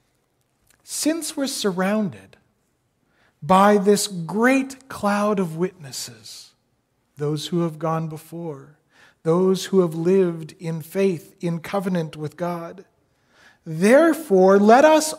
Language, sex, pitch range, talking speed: English, male, 165-235 Hz, 105 wpm